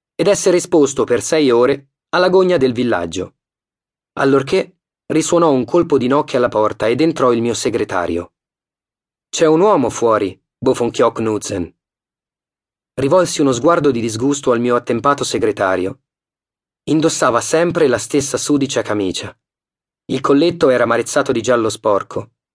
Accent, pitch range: native, 120-155 Hz